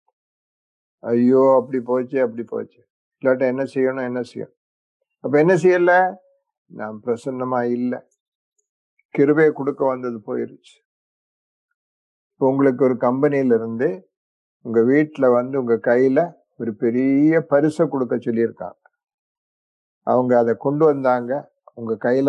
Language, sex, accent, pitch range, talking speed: English, male, Indian, 120-160 Hz, 95 wpm